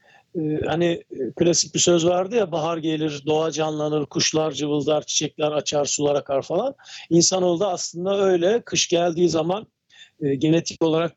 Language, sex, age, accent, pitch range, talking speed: Turkish, male, 50-69, native, 150-180 Hz, 140 wpm